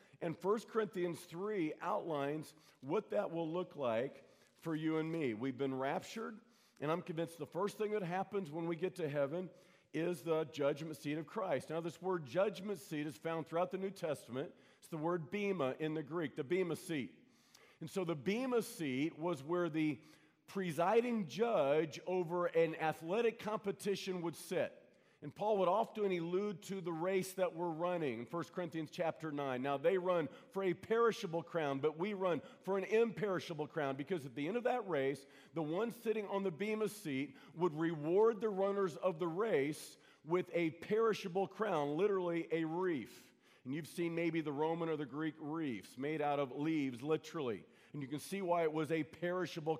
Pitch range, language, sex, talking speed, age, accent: 155-195 Hz, English, male, 185 wpm, 50-69, American